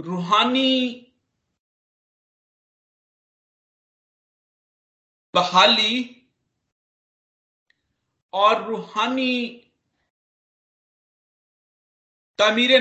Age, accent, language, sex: 50-69, native, Hindi, male